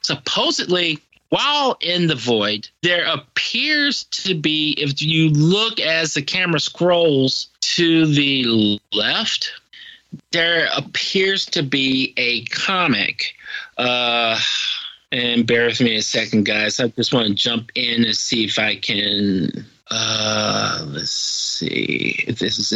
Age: 40-59